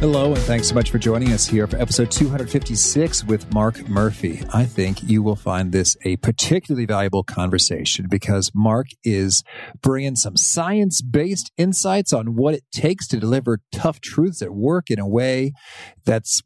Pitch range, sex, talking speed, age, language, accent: 105-145 Hz, male, 170 wpm, 40-59, English, American